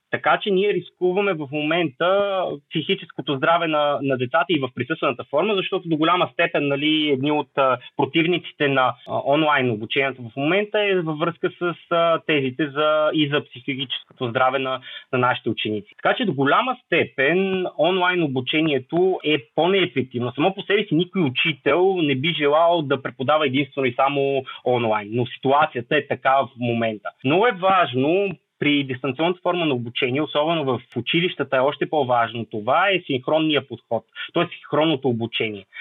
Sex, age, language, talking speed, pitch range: male, 30-49, Bulgarian, 160 wpm, 130-170 Hz